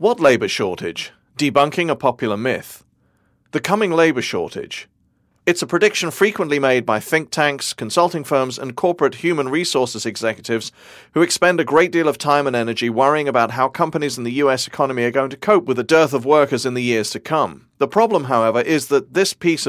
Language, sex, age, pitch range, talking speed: English, male, 40-59, 120-155 Hz, 195 wpm